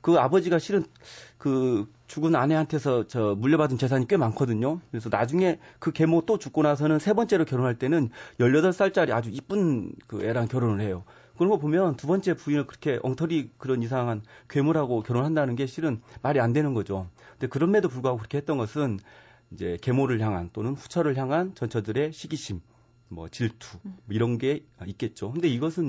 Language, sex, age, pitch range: Korean, male, 40-59, 110-155 Hz